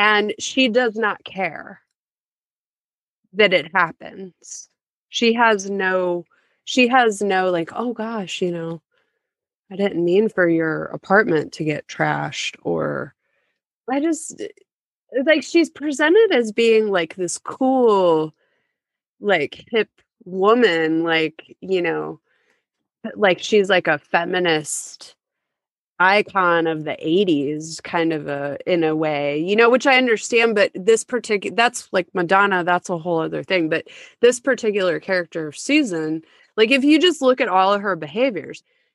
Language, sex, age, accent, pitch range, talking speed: English, female, 20-39, American, 165-235 Hz, 140 wpm